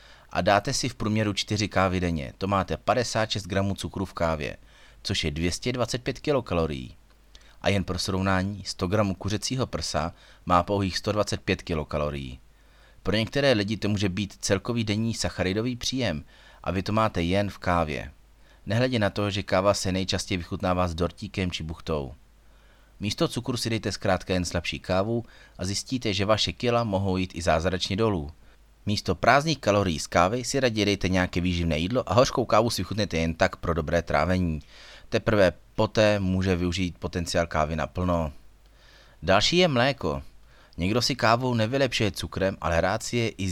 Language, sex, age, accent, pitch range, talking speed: Czech, male, 30-49, native, 85-110 Hz, 160 wpm